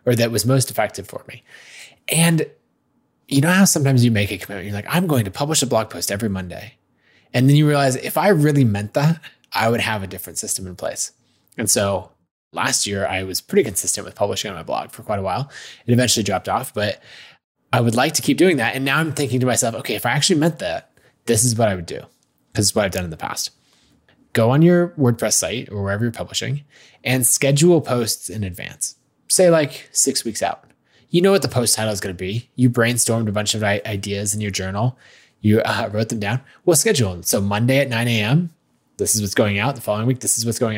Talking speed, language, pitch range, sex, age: 240 wpm, English, 105-135 Hz, male, 20-39